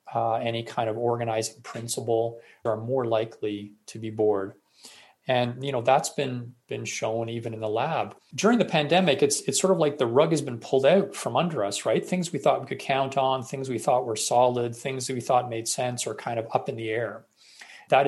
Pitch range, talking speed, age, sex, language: 115-145 Hz, 220 wpm, 40-59, male, English